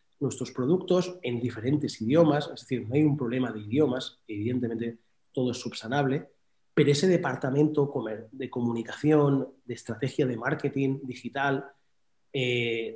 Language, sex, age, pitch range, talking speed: Spanish, male, 30-49, 125-155 Hz, 130 wpm